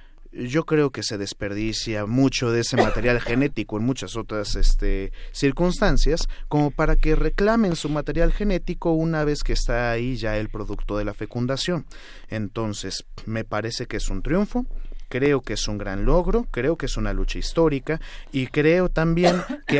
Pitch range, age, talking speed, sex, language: 110-145 Hz, 30-49, 165 wpm, male, Spanish